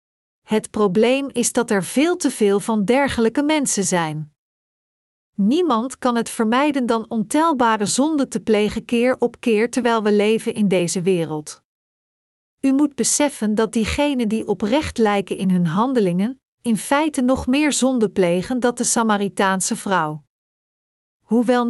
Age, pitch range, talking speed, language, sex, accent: 50-69, 200-250 Hz, 145 wpm, Dutch, female, Dutch